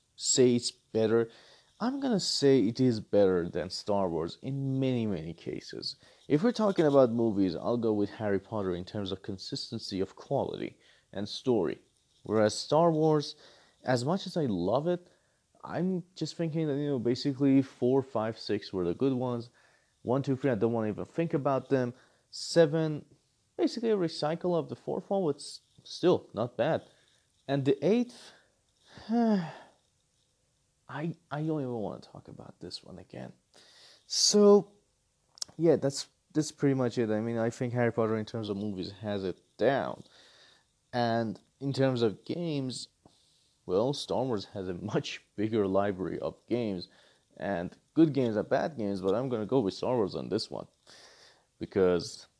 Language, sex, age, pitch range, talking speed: English, male, 30-49, 110-155 Hz, 170 wpm